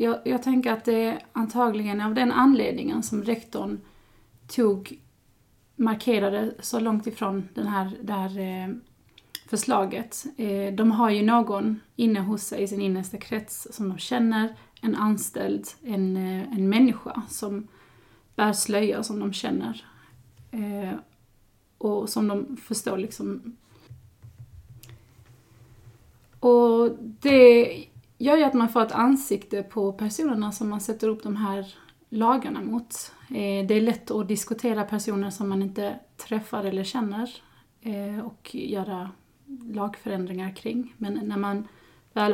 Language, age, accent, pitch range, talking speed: Swedish, 30-49, native, 200-230 Hz, 130 wpm